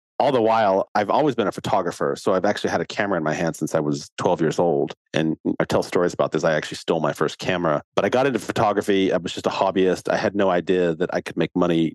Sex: male